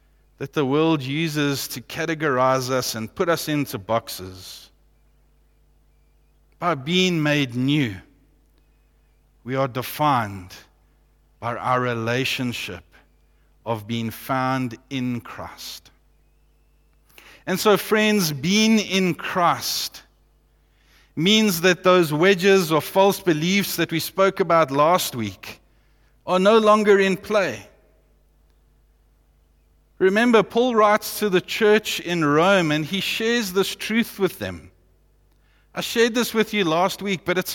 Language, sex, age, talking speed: English, male, 50-69, 120 wpm